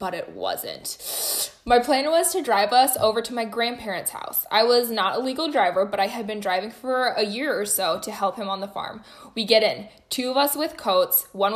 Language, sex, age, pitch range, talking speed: English, female, 10-29, 205-275 Hz, 235 wpm